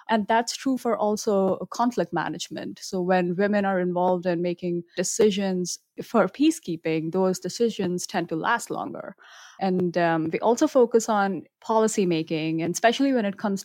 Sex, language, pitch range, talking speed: female, English, 180-220 Hz, 155 wpm